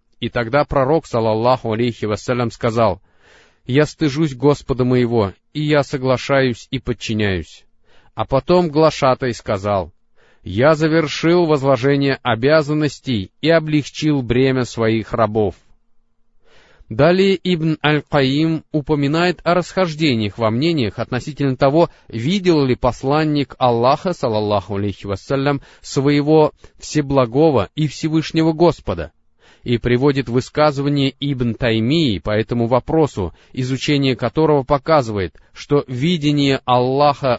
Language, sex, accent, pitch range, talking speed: Russian, male, native, 115-155 Hz, 105 wpm